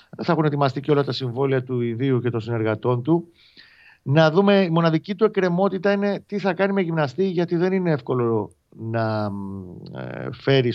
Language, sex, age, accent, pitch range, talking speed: Greek, male, 40-59, native, 115-155 Hz, 175 wpm